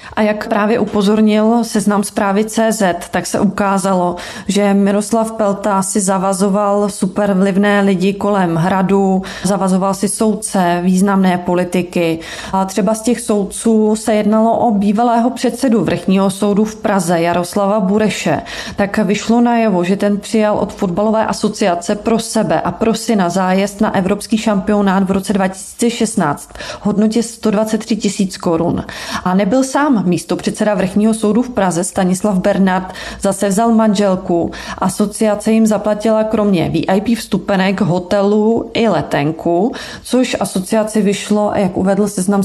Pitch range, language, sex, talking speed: 190-220 Hz, Czech, female, 135 wpm